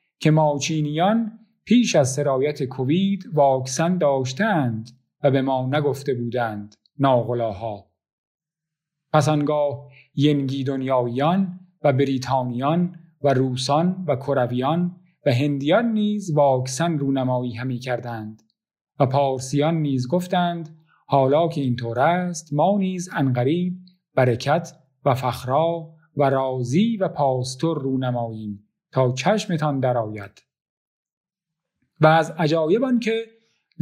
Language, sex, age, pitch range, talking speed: Persian, male, 40-59, 135-175 Hz, 105 wpm